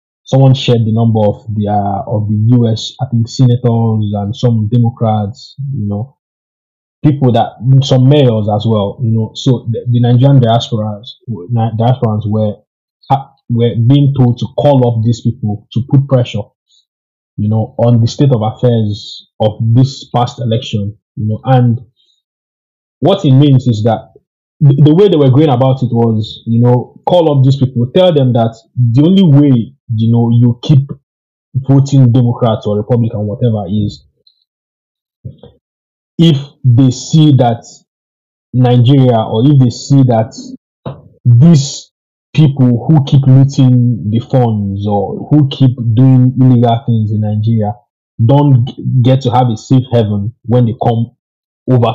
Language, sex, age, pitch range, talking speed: English, male, 20-39, 110-135 Hz, 150 wpm